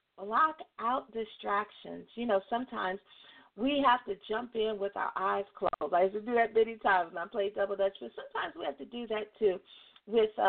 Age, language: 40-59, English